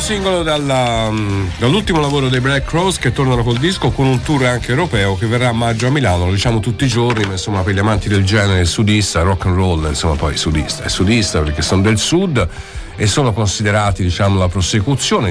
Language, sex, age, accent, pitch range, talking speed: Italian, male, 50-69, native, 90-120 Hz, 210 wpm